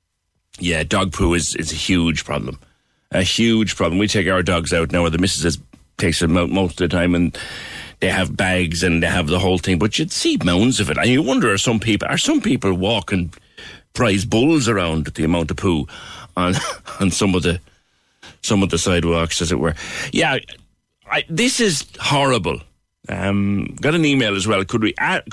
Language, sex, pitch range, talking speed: English, male, 85-115 Hz, 210 wpm